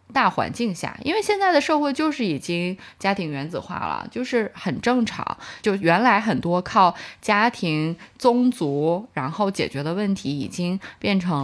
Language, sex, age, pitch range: Chinese, female, 20-39, 160-230 Hz